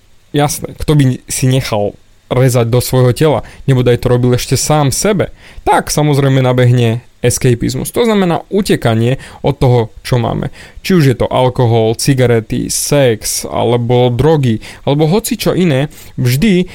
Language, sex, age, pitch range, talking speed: Slovak, male, 20-39, 125-165 Hz, 145 wpm